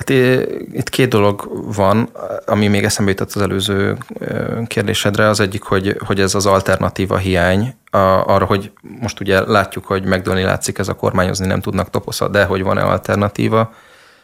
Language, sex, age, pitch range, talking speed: Hungarian, male, 20-39, 95-105 Hz, 155 wpm